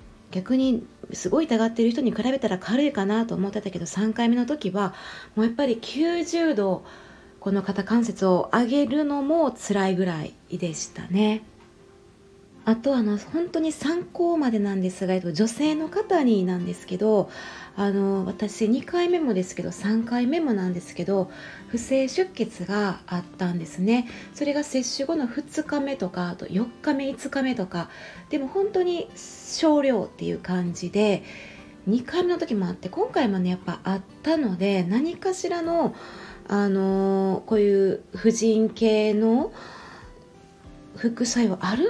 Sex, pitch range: female, 185-280 Hz